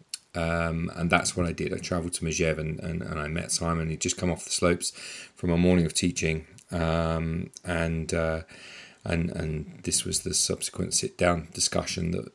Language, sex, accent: English, male, British